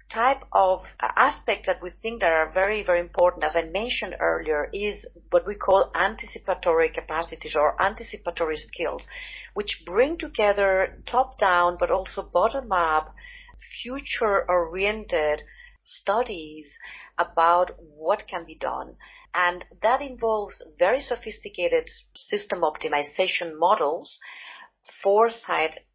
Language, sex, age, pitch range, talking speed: English, female, 40-59, 170-240 Hz, 110 wpm